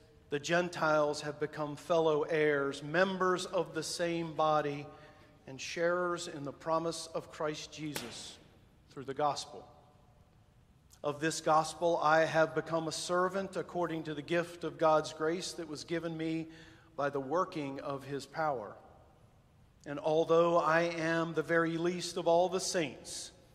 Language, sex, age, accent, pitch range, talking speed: English, male, 50-69, American, 145-170 Hz, 150 wpm